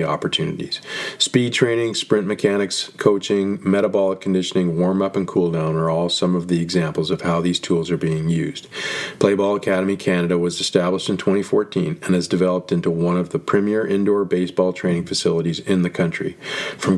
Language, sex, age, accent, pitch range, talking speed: English, male, 40-59, American, 85-100 Hz, 170 wpm